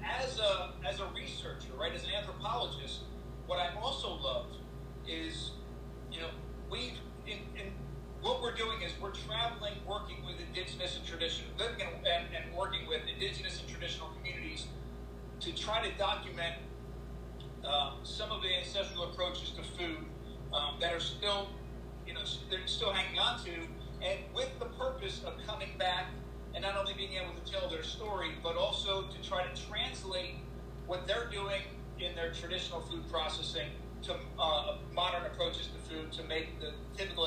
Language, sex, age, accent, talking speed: Portuguese, male, 40-59, American, 165 wpm